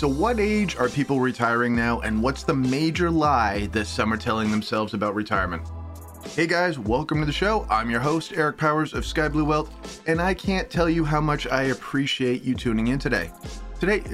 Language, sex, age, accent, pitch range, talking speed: English, male, 30-49, American, 110-150 Hz, 205 wpm